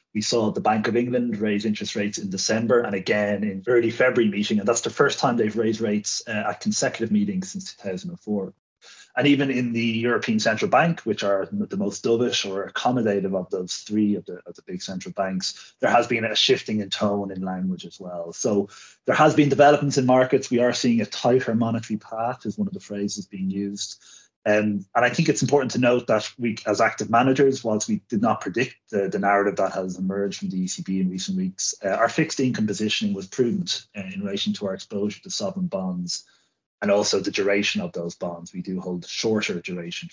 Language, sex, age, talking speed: English, male, 30-49, 215 wpm